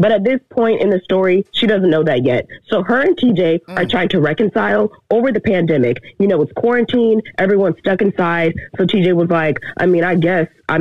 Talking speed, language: 215 wpm, English